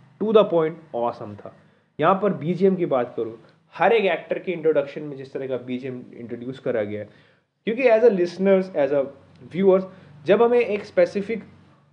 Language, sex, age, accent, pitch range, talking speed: Hindi, male, 30-49, native, 135-190 Hz, 190 wpm